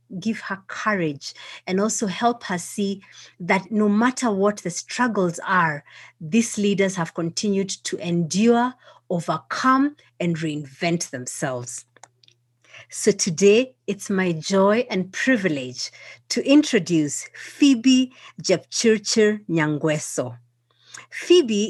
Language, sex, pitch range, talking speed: English, female, 170-235 Hz, 105 wpm